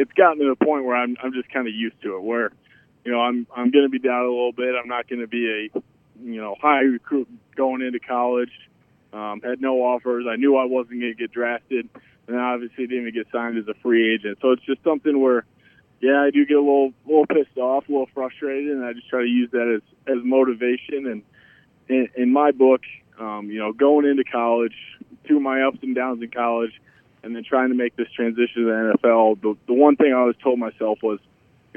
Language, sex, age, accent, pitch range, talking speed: English, male, 20-39, American, 115-135 Hz, 240 wpm